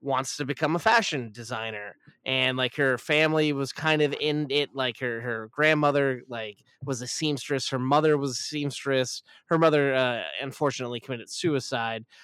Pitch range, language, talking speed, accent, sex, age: 120-145 Hz, English, 165 wpm, American, male, 20-39